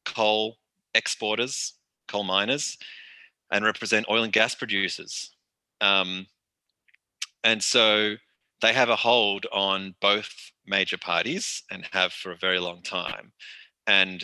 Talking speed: 120 wpm